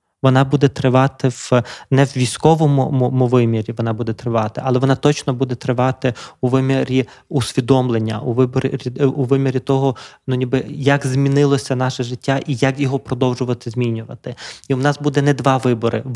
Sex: male